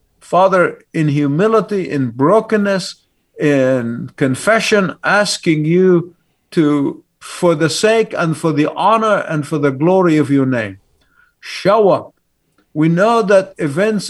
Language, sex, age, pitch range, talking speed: English, male, 50-69, 140-185 Hz, 130 wpm